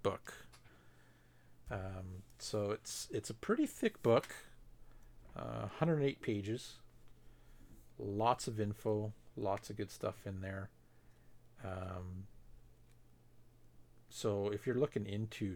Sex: male